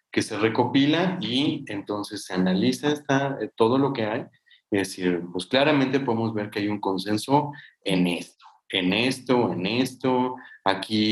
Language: Spanish